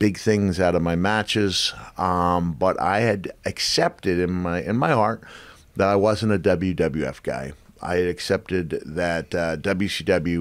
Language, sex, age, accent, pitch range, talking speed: English, male, 40-59, American, 80-95 Hz, 160 wpm